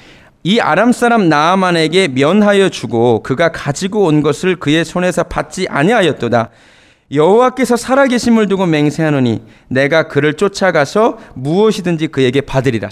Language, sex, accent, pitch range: Korean, male, native, 135-200 Hz